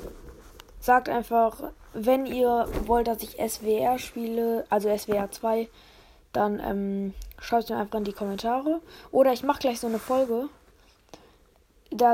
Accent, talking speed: German, 145 wpm